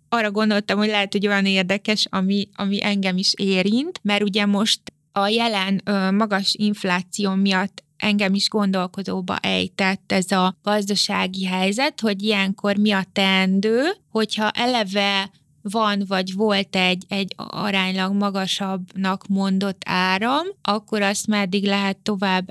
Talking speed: 130 wpm